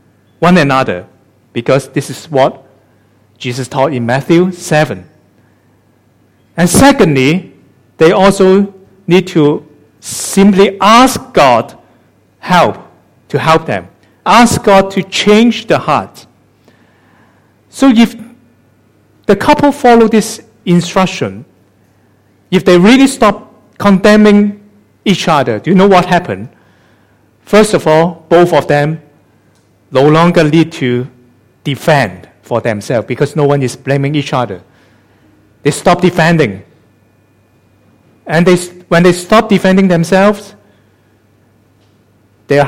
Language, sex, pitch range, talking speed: English, male, 110-180 Hz, 110 wpm